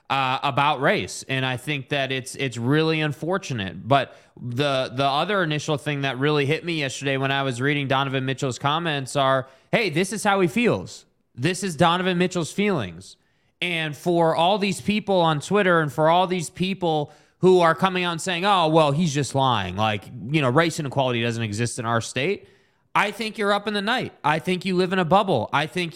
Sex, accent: male, American